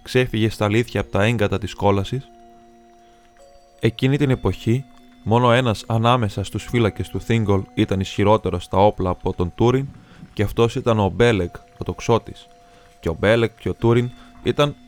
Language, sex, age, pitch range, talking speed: Greek, male, 20-39, 100-120 Hz, 155 wpm